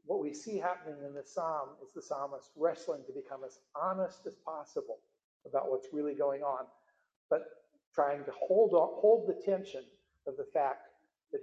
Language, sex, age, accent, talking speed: English, male, 50-69, American, 180 wpm